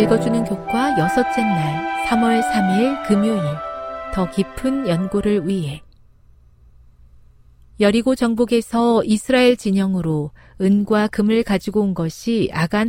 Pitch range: 160-235 Hz